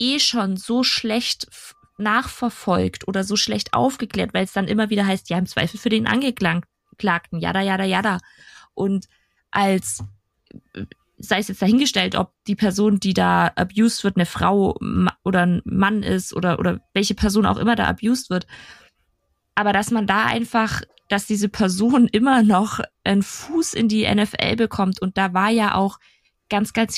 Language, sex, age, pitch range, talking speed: German, female, 20-39, 190-225 Hz, 165 wpm